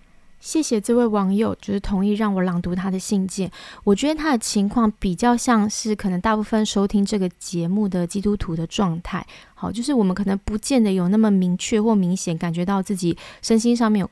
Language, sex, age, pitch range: Chinese, female, 20-39, 190-230 Hz